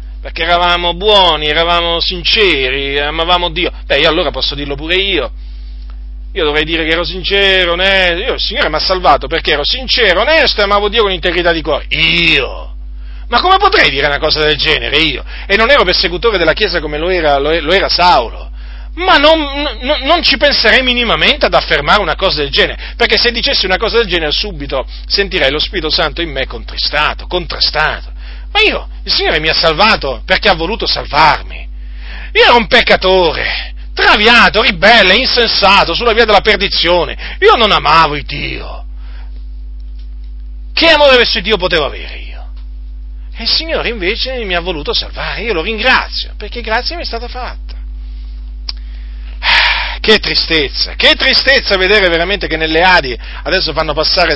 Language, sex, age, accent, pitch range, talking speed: Italian, male, 40-59, native, 135-200 Hz, 170 wpm